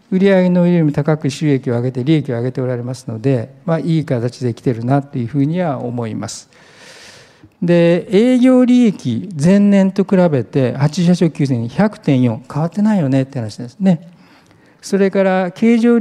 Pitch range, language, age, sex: 125-190 Hz, Japanese, 50-69, male